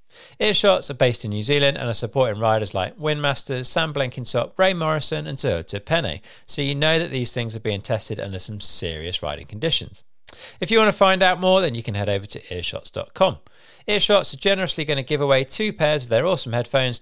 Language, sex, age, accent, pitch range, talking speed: English, male, 40-59, British, 115-170 Hz, 210 wpm